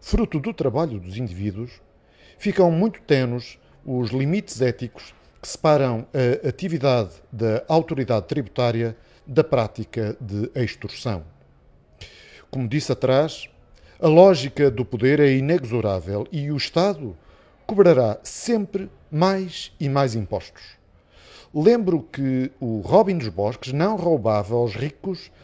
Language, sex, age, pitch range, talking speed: Portuguese, male, 50-69, 110-160 Hz, 120 wpm